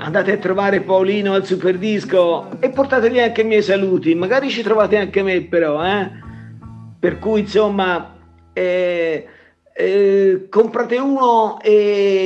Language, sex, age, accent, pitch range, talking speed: Italian, male, 50-69, native, 180-225 Hz, 130 wpm